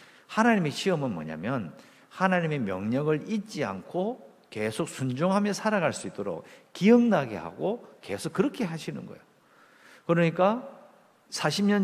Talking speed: 100 wpm